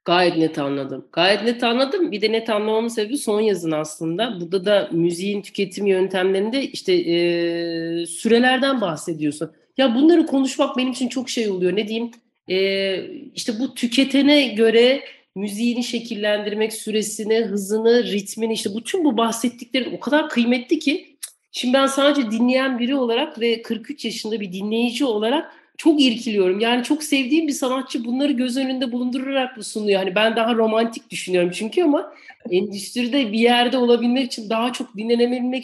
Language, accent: Turkish, native